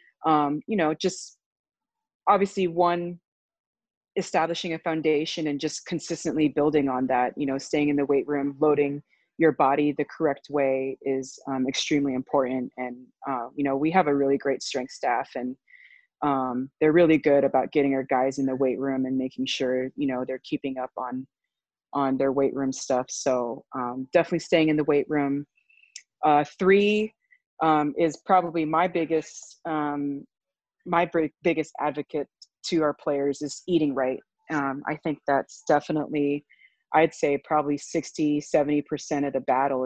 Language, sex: English, female